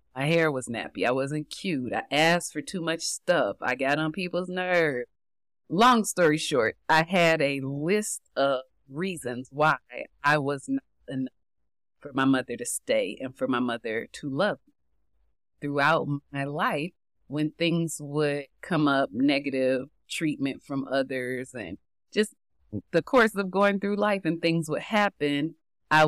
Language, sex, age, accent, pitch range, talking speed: English, female, 30-49, American, 135-160 Hz, 160 wpm